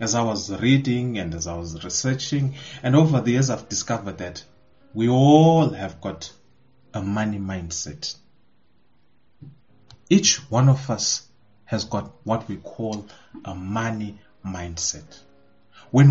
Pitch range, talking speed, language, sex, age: 100-135 Hz, 135 wpm, English, male, 30-49